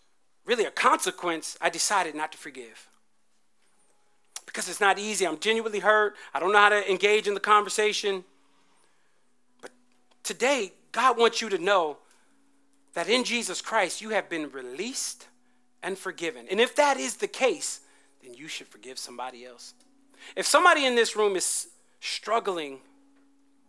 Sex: male